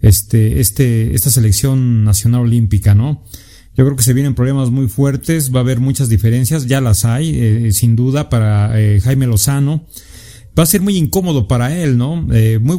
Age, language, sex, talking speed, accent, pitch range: 40-59, Spanish, male, 190 wpm, Mexican, 110-135 Hz